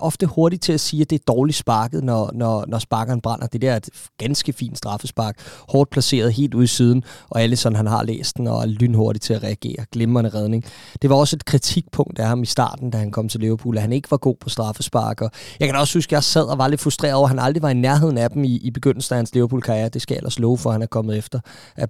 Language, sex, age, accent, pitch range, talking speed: Danish, male, 20-39, native, 115-140 Hz, 275 wpm